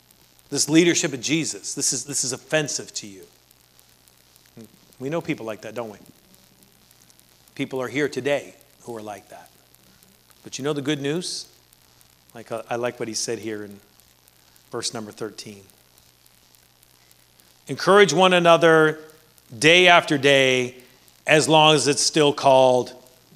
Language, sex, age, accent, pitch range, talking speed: English, male, 40-59, American, 120-175 Hz, 135 wpm